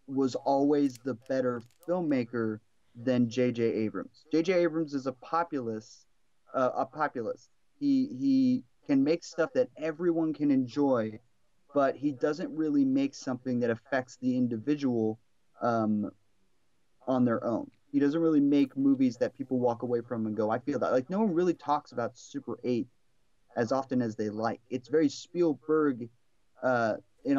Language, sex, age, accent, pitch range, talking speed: English, male, 30-49, American, 120-155 Hz, 160 wpm